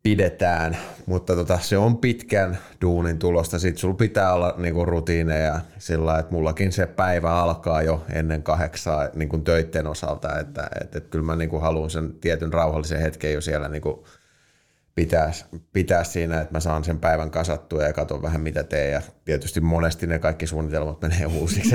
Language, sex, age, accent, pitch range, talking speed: Finnish, male, 30-49, native, 80-90 Hz, 175 wpm